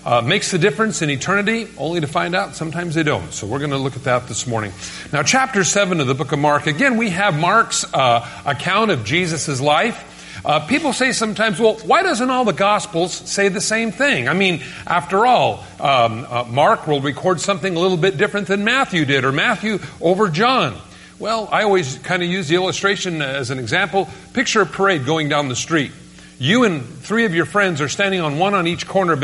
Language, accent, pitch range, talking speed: English, American, 150-200 Hz, 220 wpm